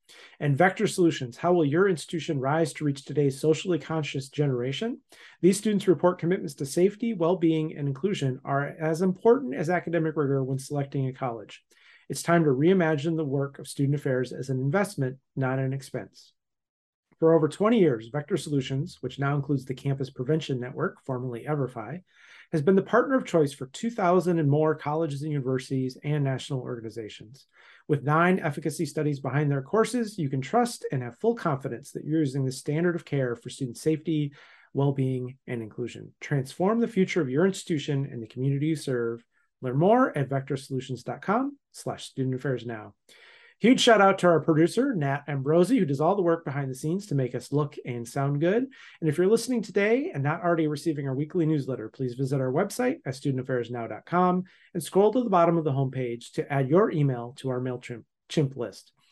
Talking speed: 185 wpm